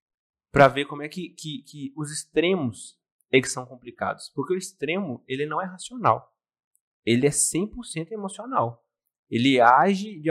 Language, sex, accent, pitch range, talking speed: Portuguese, male, Brazilian, 125-165 Hz, 155 wpm